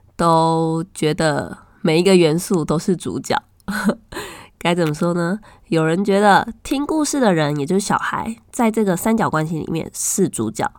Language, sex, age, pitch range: Chinese, female, 20-39, 170-245 Hz